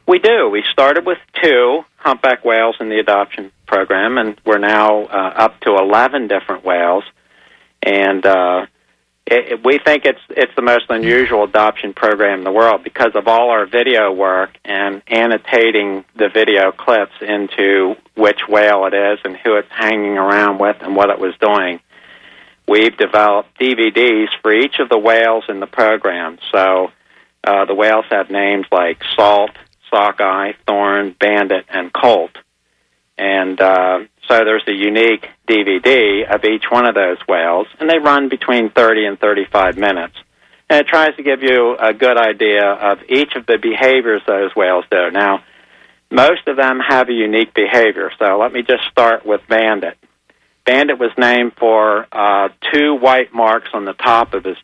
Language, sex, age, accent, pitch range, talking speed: English, male, 50-69, American, 100-120 Hz, 170 wpm